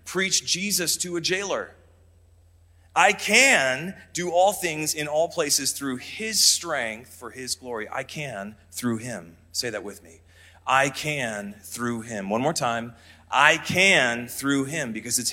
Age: 30-49